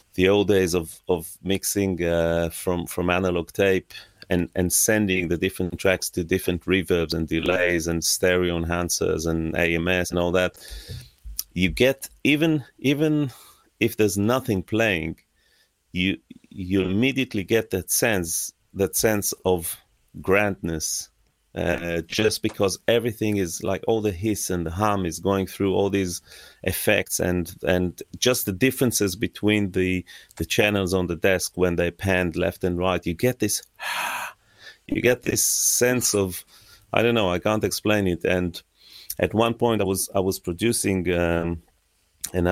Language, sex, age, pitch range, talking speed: English, male, 30-49, 85-105 Hz, 155 wpm